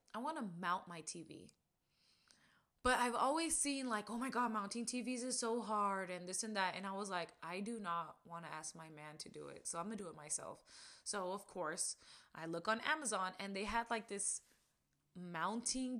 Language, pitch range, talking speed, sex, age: English, 185-240 Hz, 220 wpm, female, 20-39